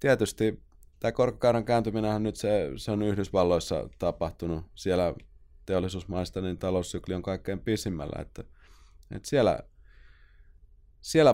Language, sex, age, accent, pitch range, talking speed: Finnish, male, 20-39, native, 90-120 Hz, 100 wpm